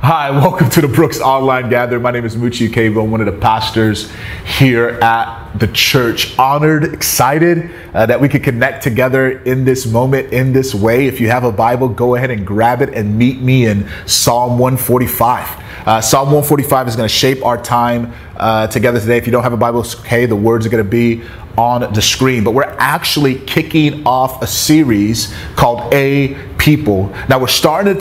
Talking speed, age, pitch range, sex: 195 wpm, 30-49, 115-145 Hz, male